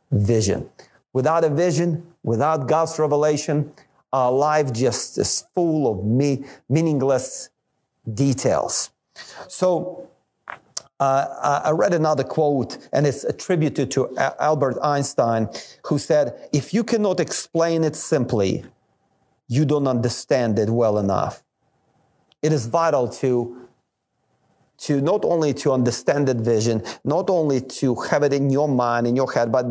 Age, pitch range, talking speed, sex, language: 40-59, 120-155 Hz, 130 wpm, male, English